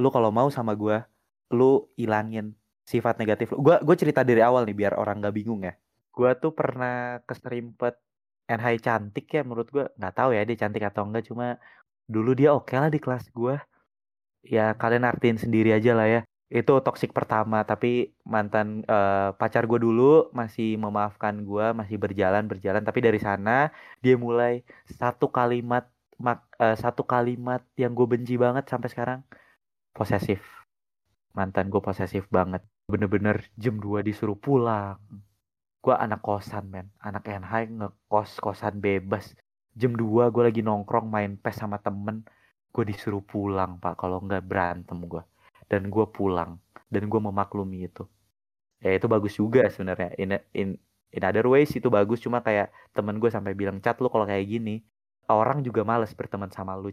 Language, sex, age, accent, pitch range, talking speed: Indonesian, male, 20-39, native, 100-120 Hz, 165 wpm